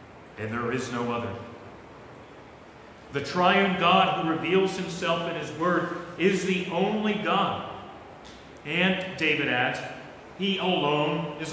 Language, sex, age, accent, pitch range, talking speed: English, male, 40-59, American, 130-175 Hz, 125 wpm